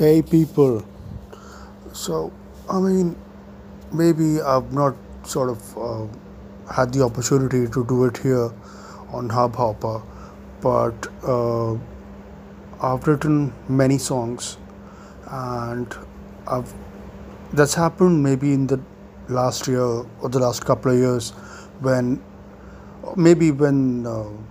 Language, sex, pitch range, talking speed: English, male, 110-140 Hz, 110 wpm